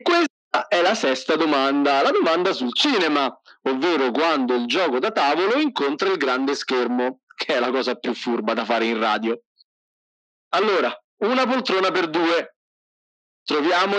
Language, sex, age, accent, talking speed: Italian, male, 40-59, native, 155 wpm